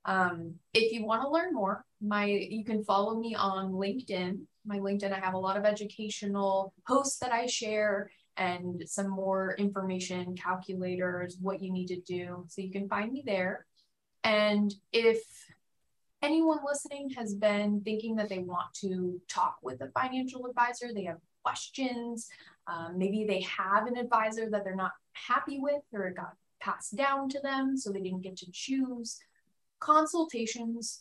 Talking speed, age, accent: 165 wpm, 20-39, American